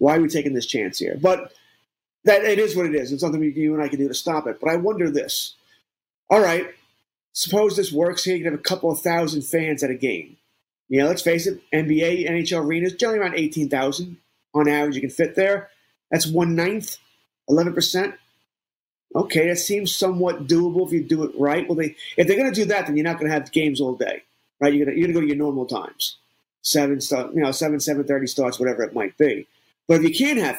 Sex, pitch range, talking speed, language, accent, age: male, 150-200 Hz, 240 wpm, English, American, 30-49